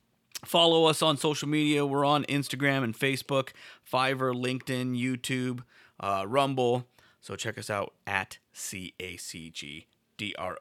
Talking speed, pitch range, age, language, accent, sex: 145 wpm, 110-135 Hz, 30-49, English, American, male